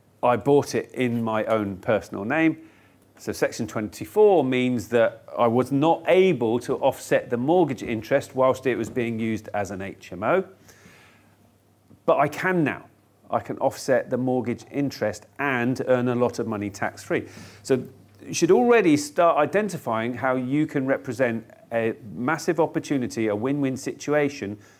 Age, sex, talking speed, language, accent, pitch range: 40-59, male, 155 wpm, English, British, 110-150 Hz